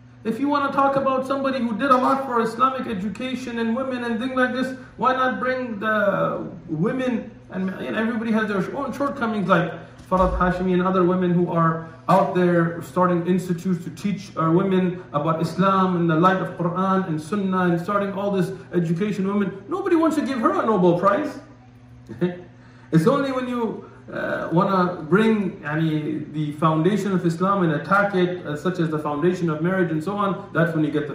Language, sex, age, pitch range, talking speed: English, male, 40-59, 155-220 Hz, 195 wpm